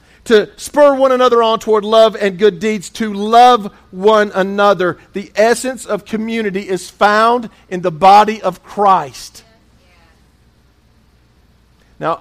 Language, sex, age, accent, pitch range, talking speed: English, male, 50-69, American, 155-215 Hz, 130 wpm